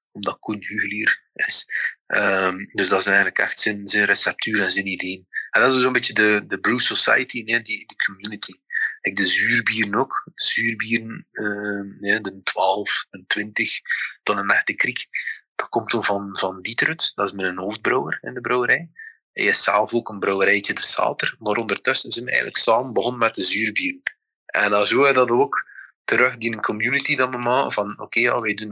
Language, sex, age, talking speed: Dutch, male, 20-39, 190 wpm